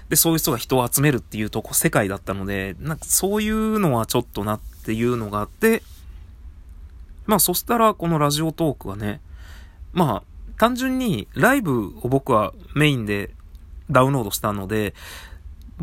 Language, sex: Japanese, male